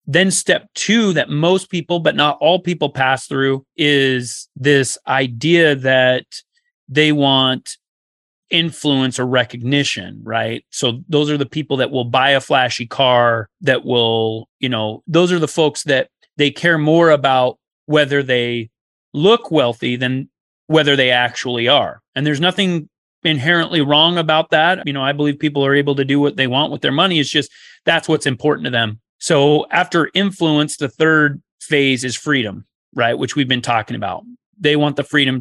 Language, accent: English, American